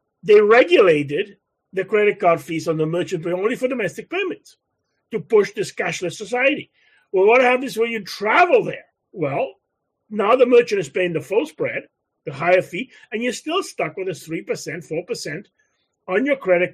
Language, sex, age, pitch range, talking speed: English, male, 40-59, 165-245 Hz, 175 wpm